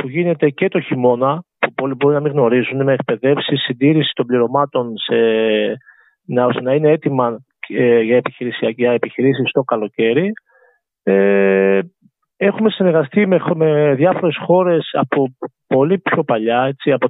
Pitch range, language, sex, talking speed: 130-185 Hz, Greek, male, 135 wpm